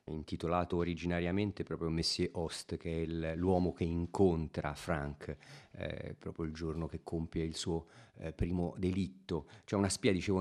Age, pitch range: 40-59, 80-95 Hz